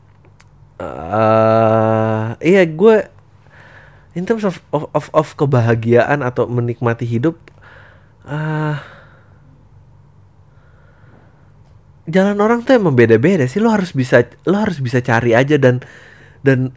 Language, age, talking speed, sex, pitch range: Indonesian, 30-49, 105 wpm, male, 115-140 Hz